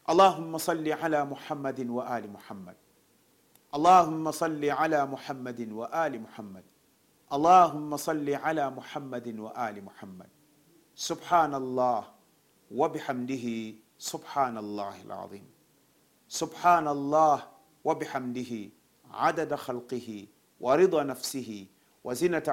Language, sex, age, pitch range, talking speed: Swahili, male, 50-69, 120-160 Hz, 85 wpm